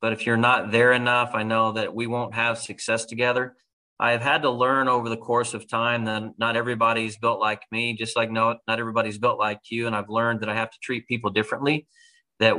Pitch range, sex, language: 110-125 Hz, male, English